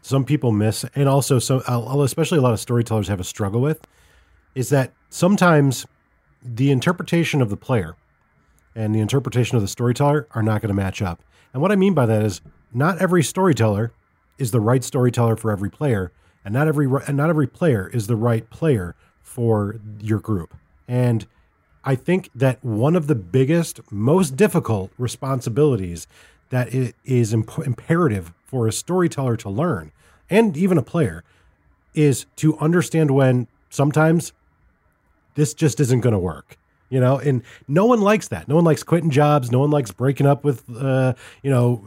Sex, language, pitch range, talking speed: male, English, 110-145 Hz, 175 wpm